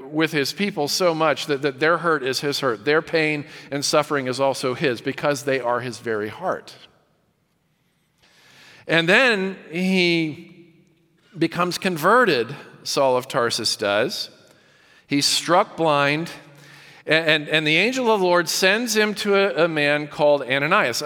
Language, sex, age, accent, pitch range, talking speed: English, male, 40-59, American, 140-180 Hz, 150 wpm